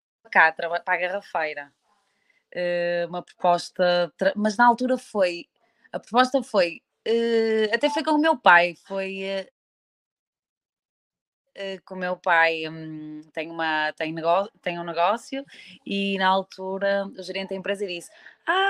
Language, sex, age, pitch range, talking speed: Portuguese, female, 20-39, 185-240 Hz, 150 wpm